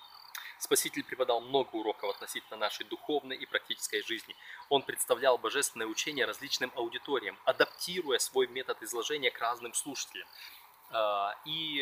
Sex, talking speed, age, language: male, 120 wpm, 20-39, Russian